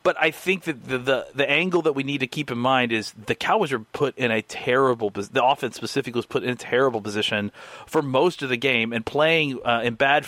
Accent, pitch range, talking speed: American, 115-140 Hz, 245 wpm